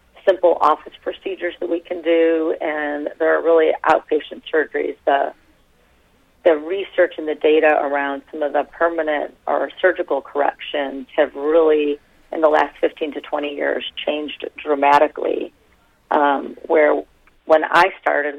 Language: English